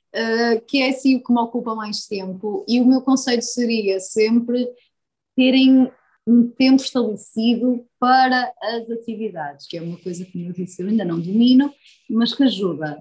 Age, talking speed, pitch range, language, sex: 20-39, 175 wpm, 210-270 Hz, Portuguese, female